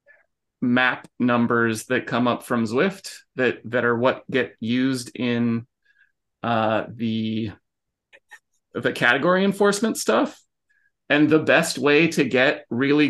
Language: English